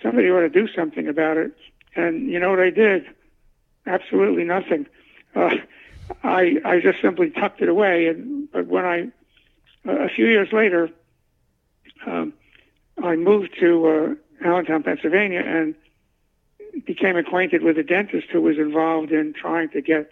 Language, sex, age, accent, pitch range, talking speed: English, male, 60-79, American, 160-210 Hz, 155 wpm